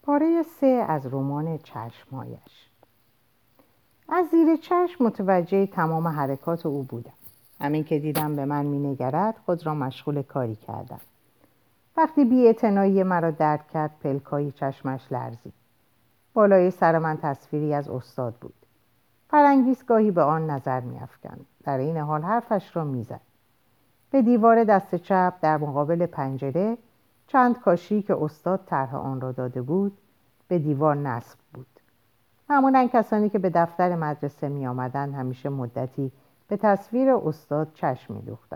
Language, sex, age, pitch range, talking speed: Persian, female, 50-69, 135-190 Hz, 135 wpm